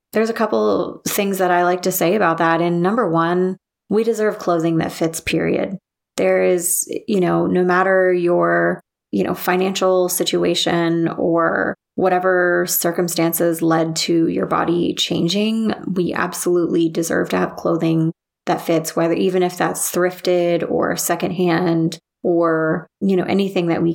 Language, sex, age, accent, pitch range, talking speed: English, female, 20-39, American, 165-185 Hz, 150 wpm